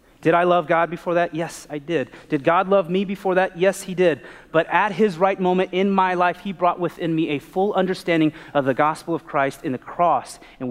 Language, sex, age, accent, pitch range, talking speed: English, male, 30-49, American, 125-170 Hz, 235 wpm